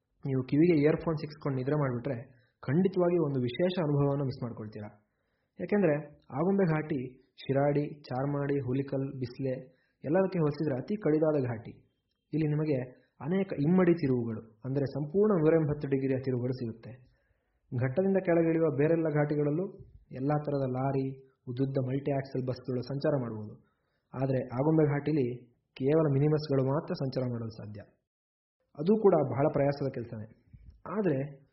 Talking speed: 120 wpm